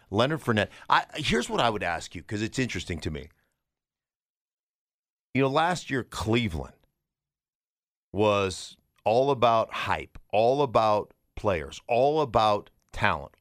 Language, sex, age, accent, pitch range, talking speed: English, male, 50-69, American, 95-125 Hz, 130 wpm